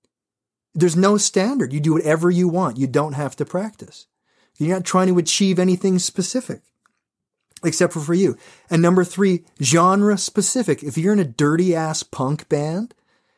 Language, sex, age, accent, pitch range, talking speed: English, male, 30-49, American, 145-190 Hz, 165 wpm